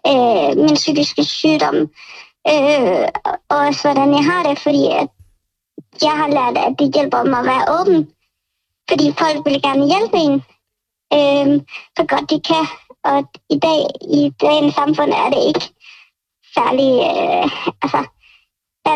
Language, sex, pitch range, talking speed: Danish, male, 280-310 Hz, 145 wpm